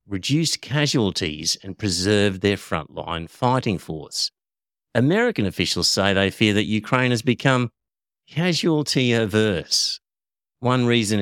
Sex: male